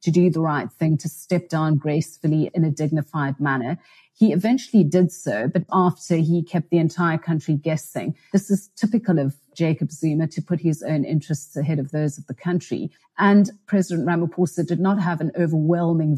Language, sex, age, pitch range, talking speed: English, female, 40-59, 155-185 Hz, 185 wpm